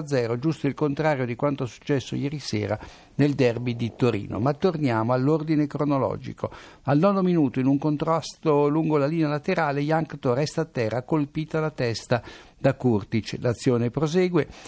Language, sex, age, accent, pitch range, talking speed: Italian, male, 60-79, native, 125-155 Hz, 160 wpm